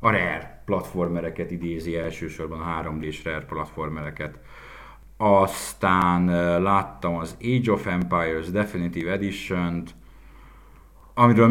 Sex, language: male, Hungarian